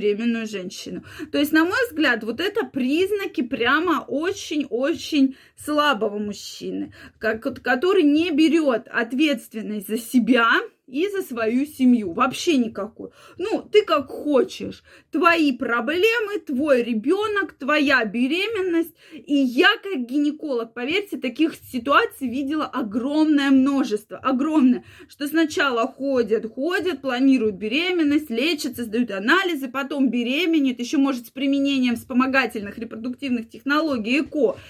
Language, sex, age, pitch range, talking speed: Russian, female, 20-39, 240-315 Hz, 115 wpm